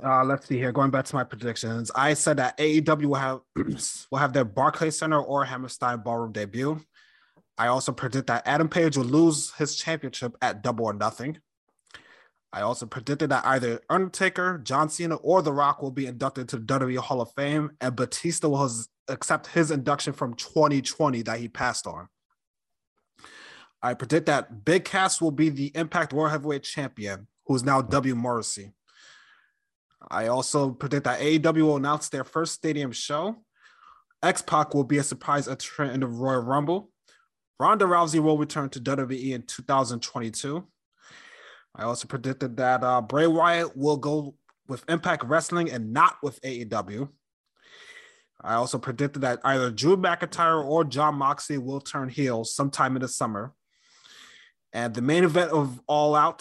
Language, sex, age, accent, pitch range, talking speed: English, male, 20-39, American, 125-155 Hz, 170 wpm